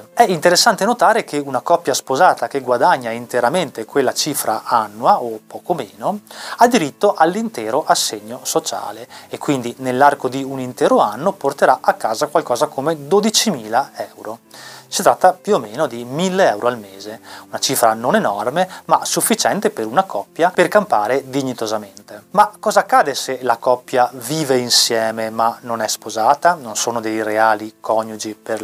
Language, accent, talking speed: Italian, native, 155 wpm